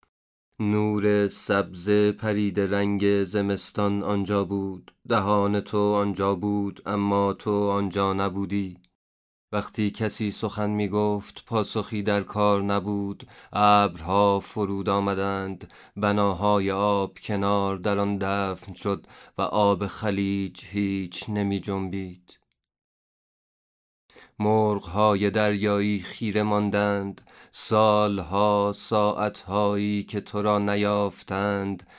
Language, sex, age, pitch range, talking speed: Persian, male, 30-49, 100-105 Hz, 90 wpm